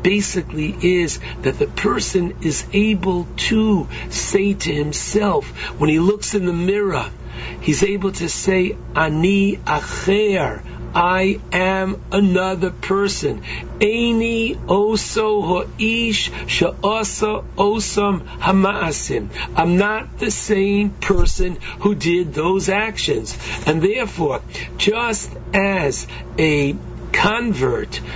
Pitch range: 175-210 Hz